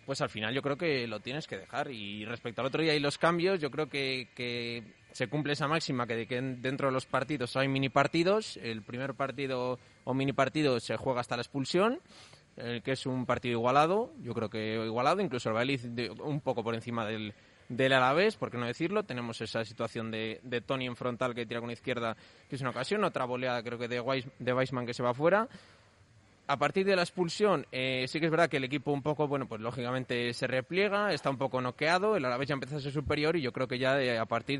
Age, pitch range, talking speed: 20-39, 120-150 Hz, 240 wpm